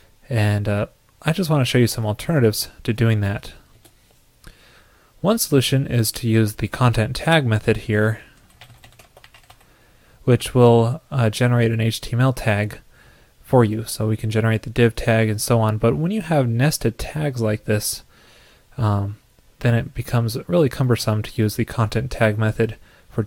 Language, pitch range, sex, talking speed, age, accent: English, 110-125 Hz, male, 160 wpm, 20-39, American